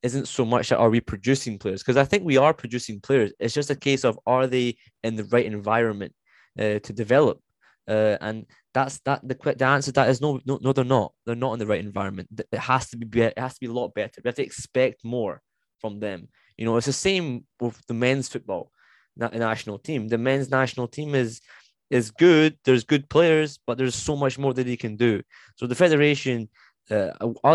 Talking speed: 220 wpm